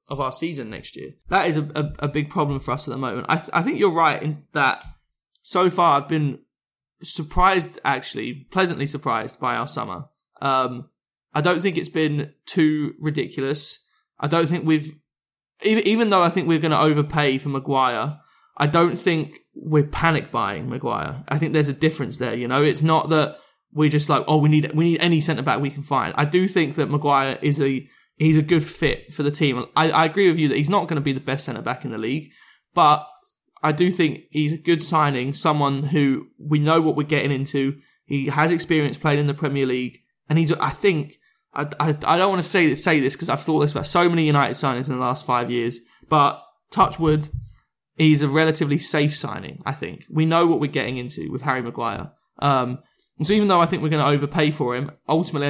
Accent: British